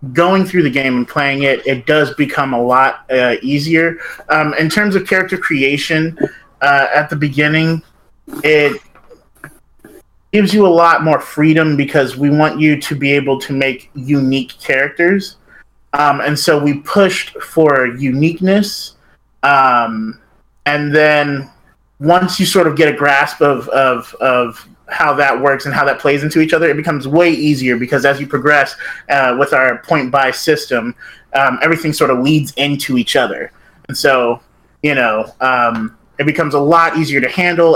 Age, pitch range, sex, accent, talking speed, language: 30-49, 135-160 Hz, male, American, 170 wpm, English